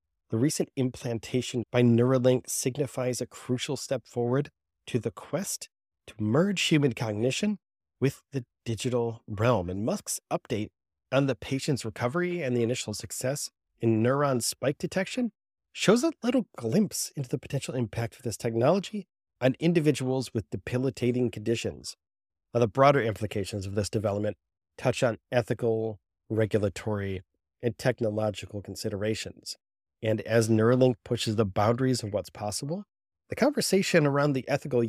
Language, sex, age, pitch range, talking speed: English, male, 30-49, 105-130 Hz, 140 wpm